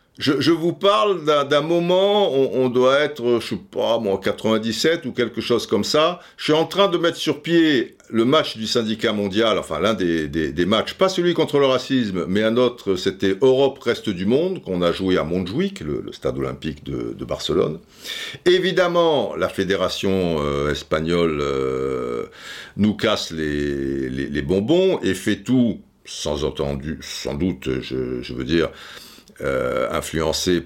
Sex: male